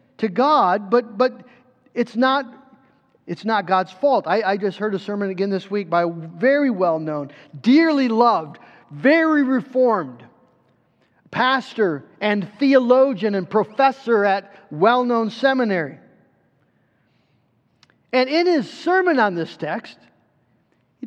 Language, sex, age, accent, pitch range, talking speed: English, male, 40-59, American, 215-290 Hz, 120 wpm